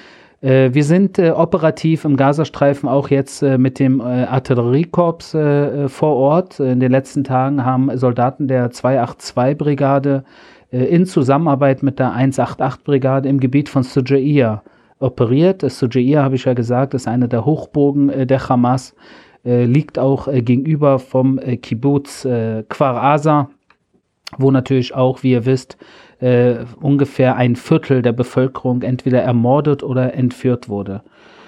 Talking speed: 145 wpm